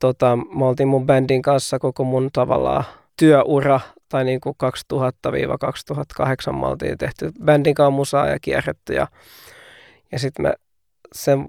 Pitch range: 135-155 Hz